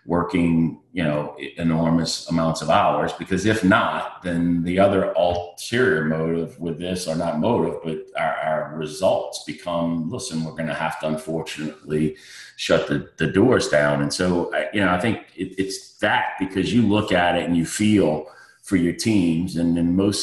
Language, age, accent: English, 30-49, American